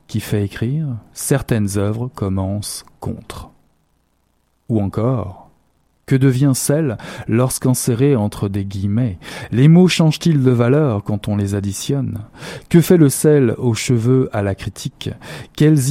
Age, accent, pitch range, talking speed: 40-59, French, 110-155 Hz, 130 wpm